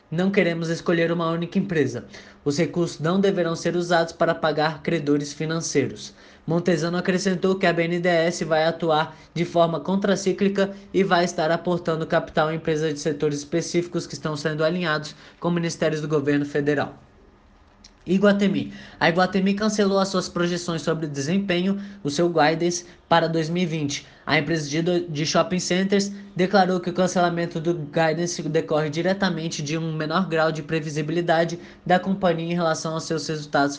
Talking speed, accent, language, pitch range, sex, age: 155 wpm, Brazilian, Portuguese, 160-185 Hz, male, 20-39